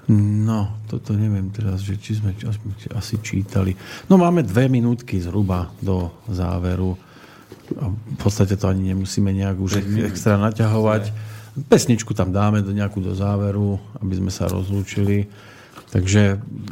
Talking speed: 135 wpm